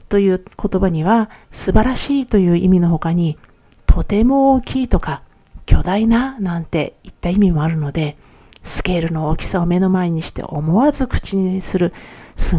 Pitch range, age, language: 165-225 Hz, 50-69, Japanese